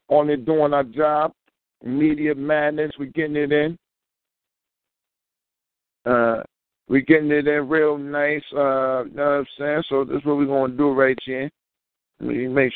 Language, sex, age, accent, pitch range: Japanese, male, 50-69, American, 120-155 Hz